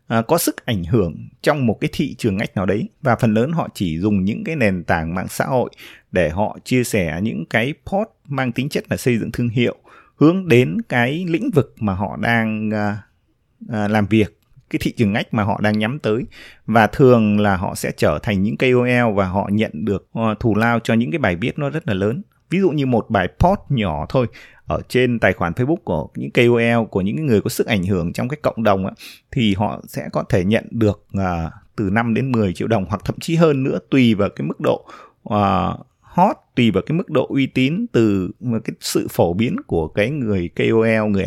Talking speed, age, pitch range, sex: 225 wpm, 20-39, 105-130 Hz, male